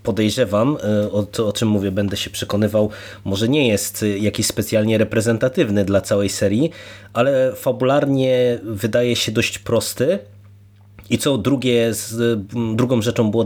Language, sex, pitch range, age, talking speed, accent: Polish, male, 105-130 Hz, 30-49, 140 wpm, native